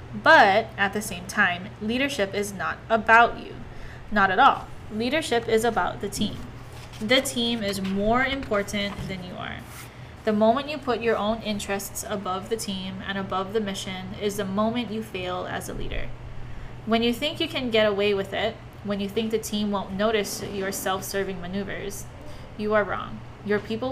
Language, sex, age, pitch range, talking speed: English, female, 10-29, 195-230 Hz, 180 wpm